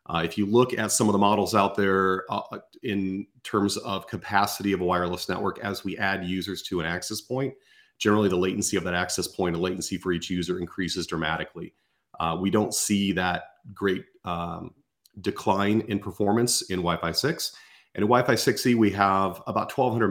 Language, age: English, 40-59